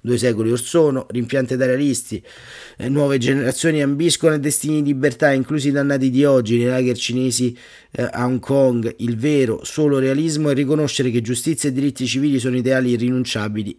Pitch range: 115-135 Hz